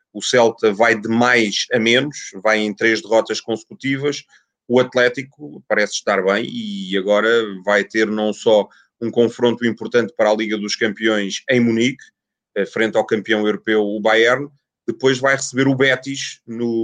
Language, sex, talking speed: Portuguese, male, 160 wpm